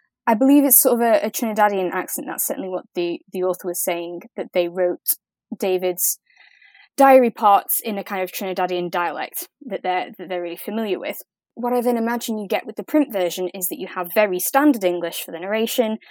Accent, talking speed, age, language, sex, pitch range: British, 210 wpm, 20-39, English, female, 180-230 Hz